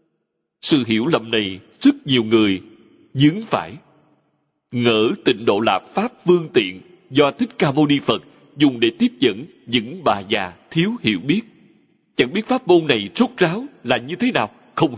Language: Vietnamese